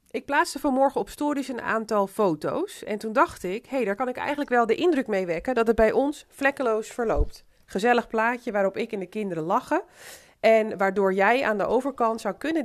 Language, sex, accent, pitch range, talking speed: Dutch, female, Dutch, 185-250 Hz, 210 wpm